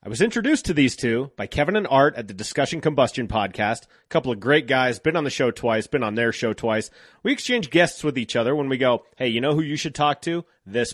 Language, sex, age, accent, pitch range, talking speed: English, male, 30-49, American, 120-165 Hz, 265 wpm